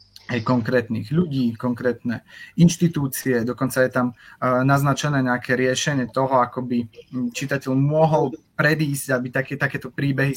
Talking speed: 125 wpm